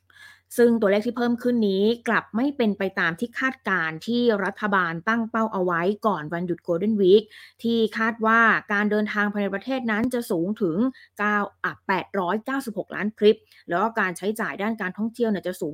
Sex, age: female, 20-39